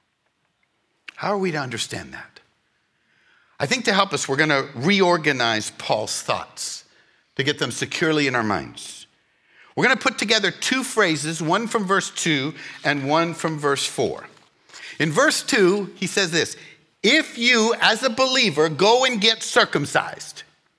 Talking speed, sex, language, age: 155 wpm, male, English, 60-79